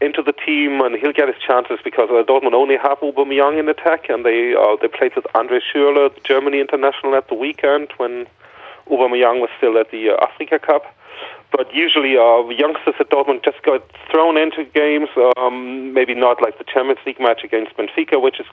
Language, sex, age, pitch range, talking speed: English, male, 30-49, 115-140 Hz, 210 wpm